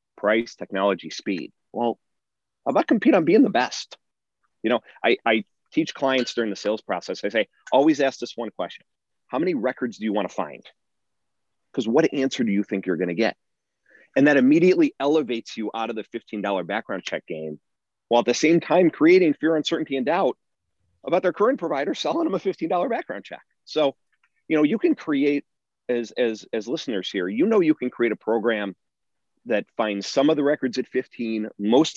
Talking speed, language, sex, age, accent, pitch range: 195 wpm, English, male, 30-49, American, 100-140 Hz